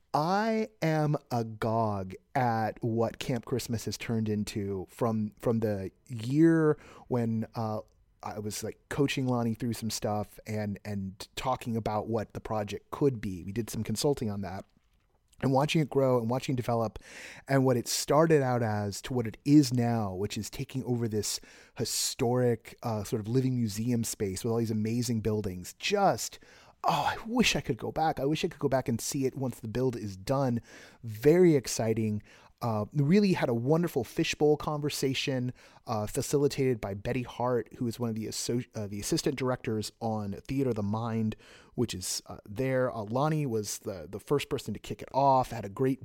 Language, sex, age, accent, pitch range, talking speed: English, male, 30-49, American, 110-140 Hz, 190 wpm